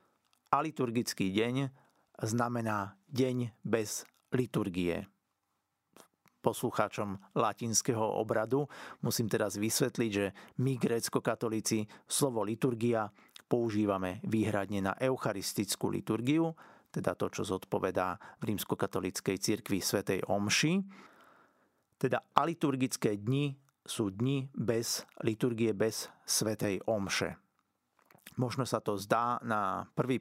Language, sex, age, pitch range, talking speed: Slovak, male, 50-69, 105-130 Hz, 95 wpm